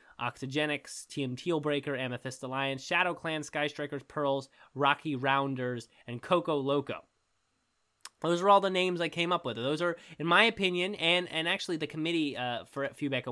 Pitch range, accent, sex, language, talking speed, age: 125-170 Hz, American, male, English, 165 wpm, 20-39